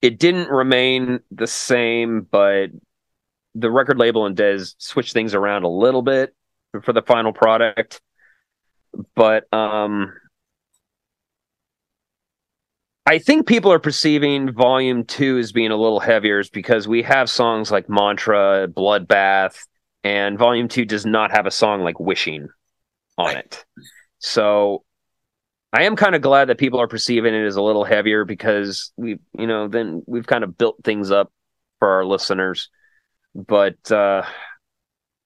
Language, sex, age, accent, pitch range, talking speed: English, male, 30-49, American, 95-125 Hz, 145 wpm